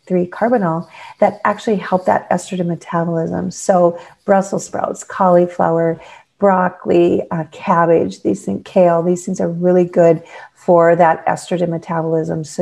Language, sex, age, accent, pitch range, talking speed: English, female, 40-59, American, 180-225 Hz, 130 wpm